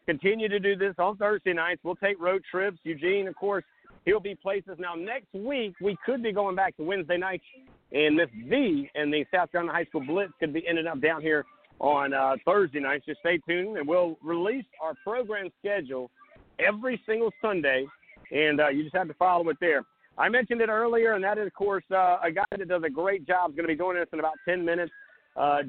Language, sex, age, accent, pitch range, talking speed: English, male, 50-69, American, 160-200 Hz, 225 wpm